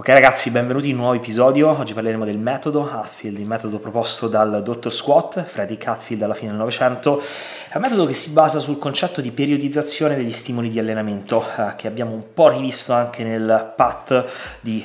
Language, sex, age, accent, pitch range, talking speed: Italian, male, 30-49, native, 110-145 Hz, 195 wpm